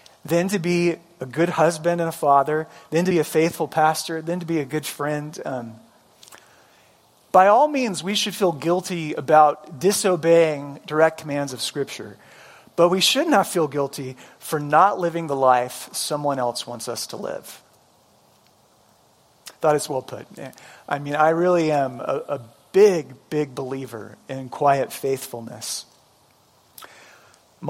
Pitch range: 140-175 Hz